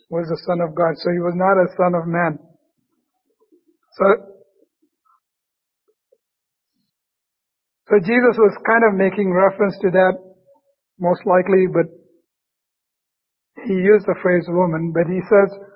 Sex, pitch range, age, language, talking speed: male, 180-220 Hz, 60-79, English, 130 wpm